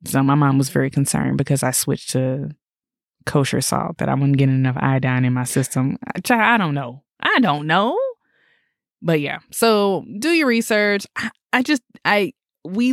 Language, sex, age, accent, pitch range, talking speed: English, female, 20-39, American, 140-195 Hz, 170 wpm